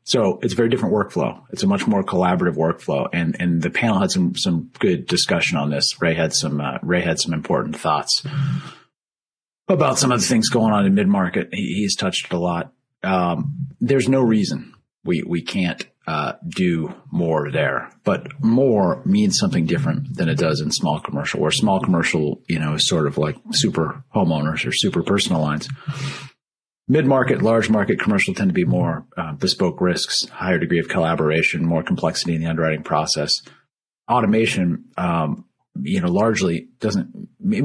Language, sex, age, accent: English, male, 40-59, American